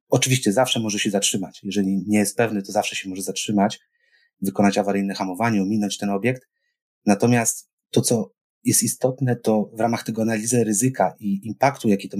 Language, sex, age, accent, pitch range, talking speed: Polish, male, 30-49, native, 100-120 Hz, 170 wpm